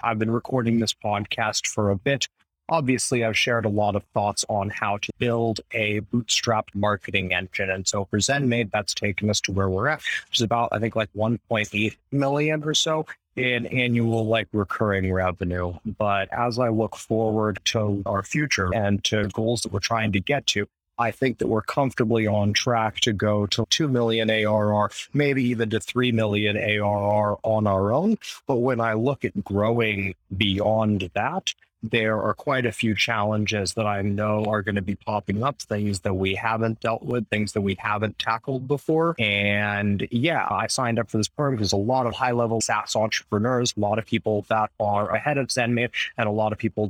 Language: English